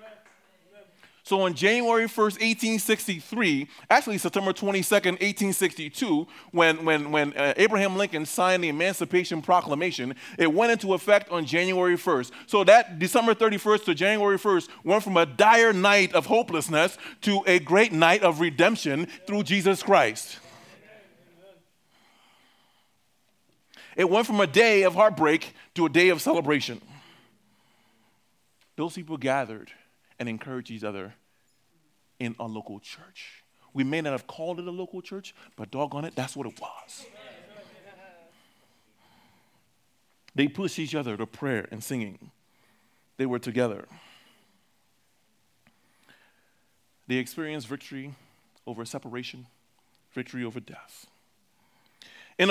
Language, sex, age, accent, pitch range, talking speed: English, male, 30-49, American, 140-200 Hz, 125 wpm